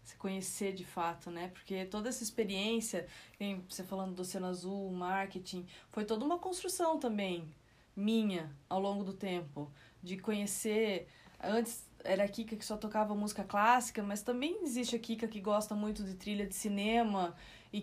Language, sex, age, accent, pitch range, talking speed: Portuguese, female, 20-39, Brazilian, 185-225 Hz, 165 wpm